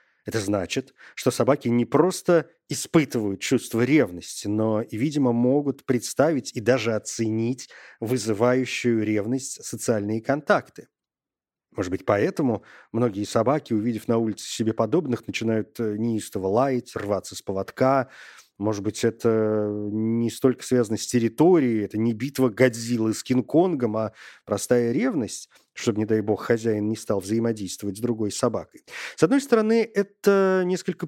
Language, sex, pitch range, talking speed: Russian, male, 110-140 Hz, 135 wpm